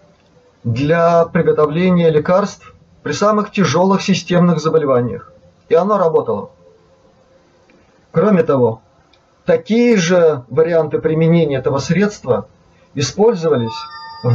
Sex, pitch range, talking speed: male, 150-190 Hz, 90 wpm